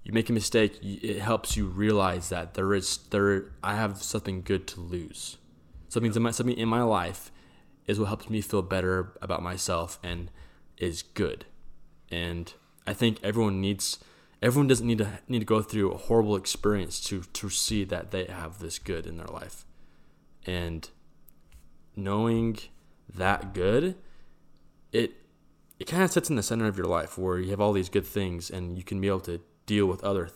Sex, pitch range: male, 90-105 Hz